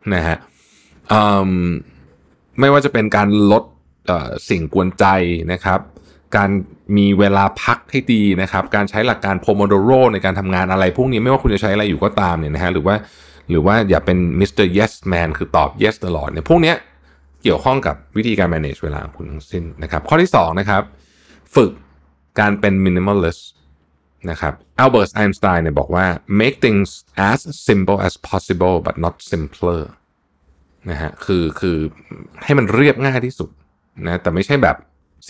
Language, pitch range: Thai, 80-110 Hz